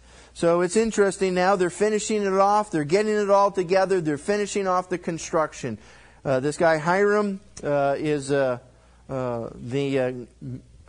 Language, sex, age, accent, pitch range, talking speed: English, male, 50-69, American, 105-140 Hz, 155 wpm